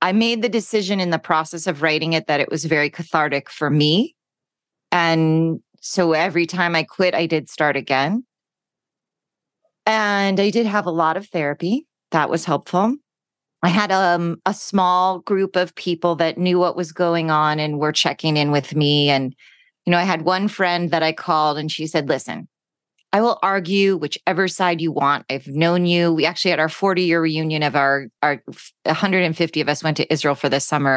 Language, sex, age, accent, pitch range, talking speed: English, female, 30-49, American, 155-190 Hz, 195 wpm